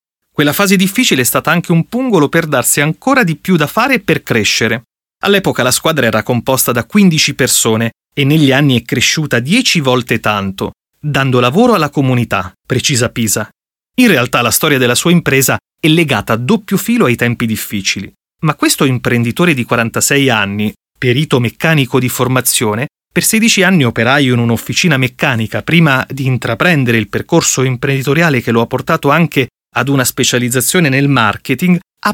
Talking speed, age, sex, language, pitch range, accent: 165 wpm, 30-49, male, Italian, 120-170 Hz, native